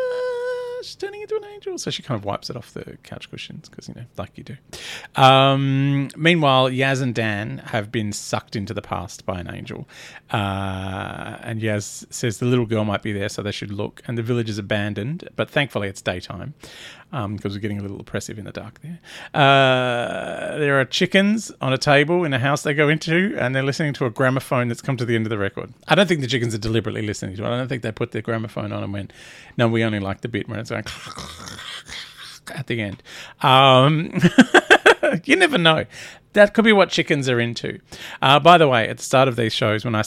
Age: 30-49